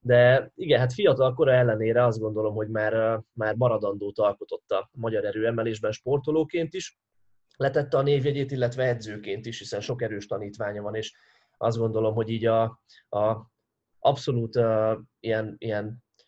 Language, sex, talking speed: Hungarian, male, 150 wpm